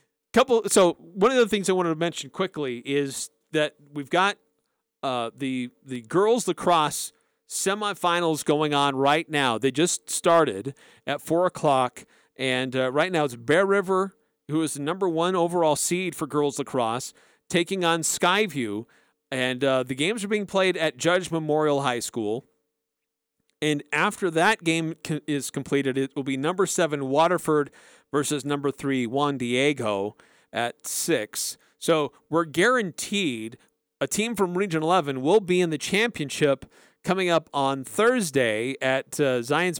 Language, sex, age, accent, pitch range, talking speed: English, male, 40-59, American, 130-175 Hz, 155 wpm